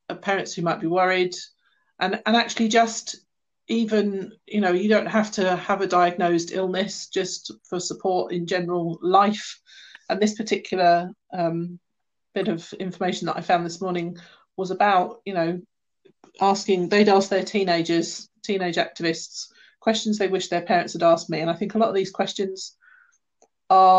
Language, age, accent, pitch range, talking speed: English, 40-59, British, 170-210 Hz, 165 wpm